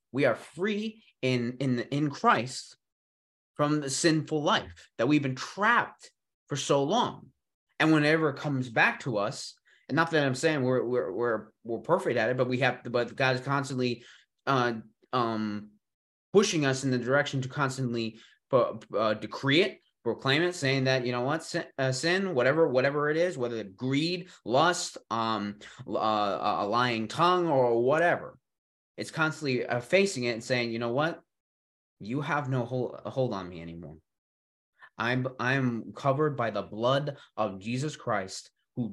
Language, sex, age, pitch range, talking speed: English, male, 20-39, 110-140 Hz, 165 wpm